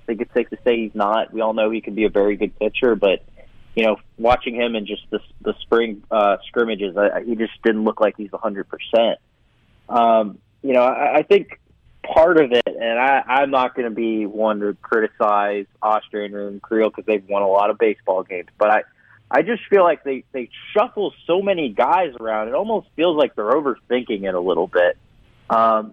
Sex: male